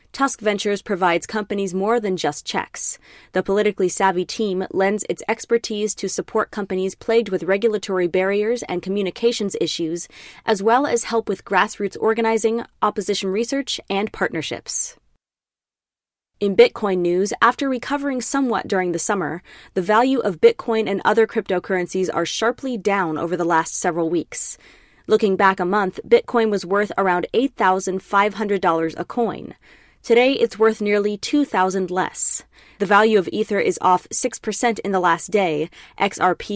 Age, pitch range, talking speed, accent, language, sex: 20-39, 180-225 Hz, 145 wpm, American, English, female